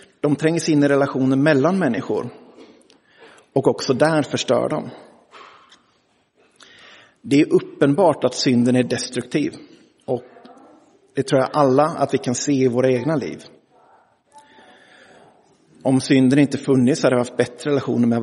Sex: male